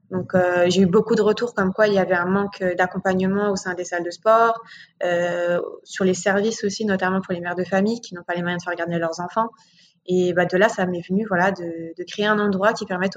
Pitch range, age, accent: 185-210 Hz, 20-39, French